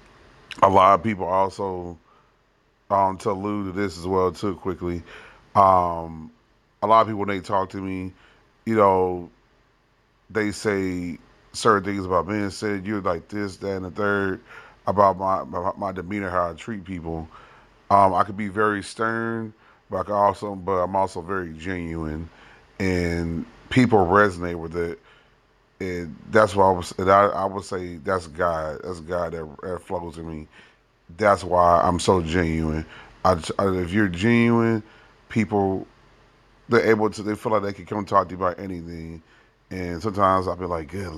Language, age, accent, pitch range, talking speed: English, 30-49, American, 90-105 Hz, 170 wpm